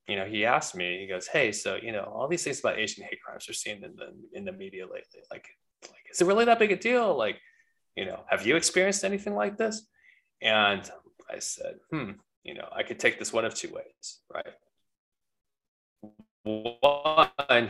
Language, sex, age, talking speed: English, male, 20-39, 205 wpm